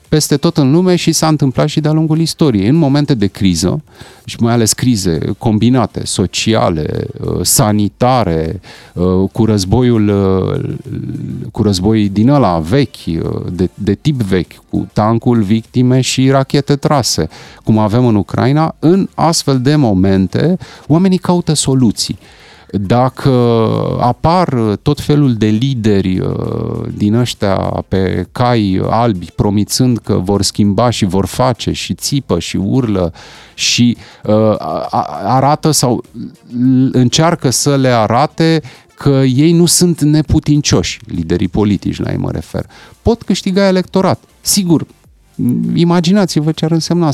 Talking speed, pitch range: 125 wpm, 105-145 Hz